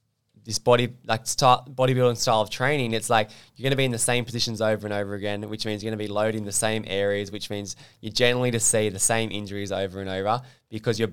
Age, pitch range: 10-29, 105-120 Hz